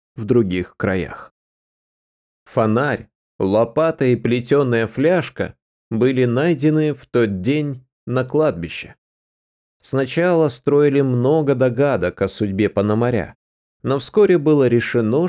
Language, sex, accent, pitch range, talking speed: Russian, male, native, 105-150 Hz, 100 wpm